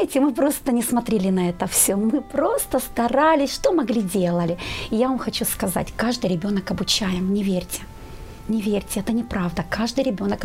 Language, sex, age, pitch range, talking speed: Ukrainian, female, 30-49, 195-245 Hz, 165 wpm